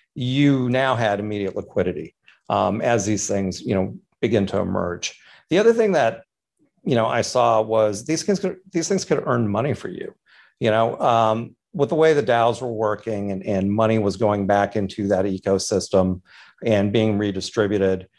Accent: American